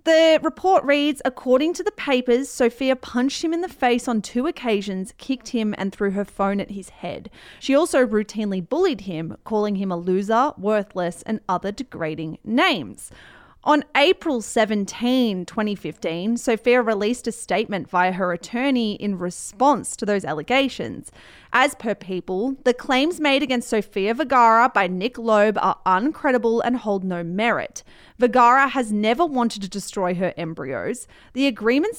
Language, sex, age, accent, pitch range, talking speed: English, female, 30-49, Australian, 200-265 Hz, 155 wpm